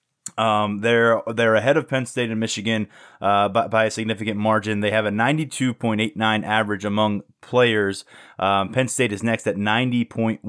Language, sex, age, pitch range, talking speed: English, male, 20-39, 110-130 Hz, 190 wpm